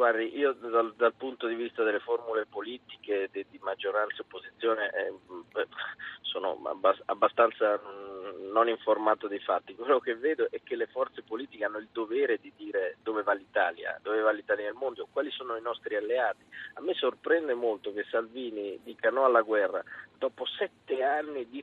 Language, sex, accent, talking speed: Italian, male, native, 170 wpm